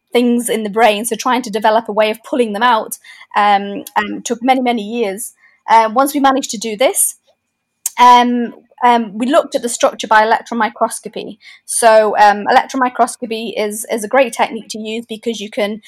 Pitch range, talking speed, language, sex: 220-265 Hz, 195 wpm, English, female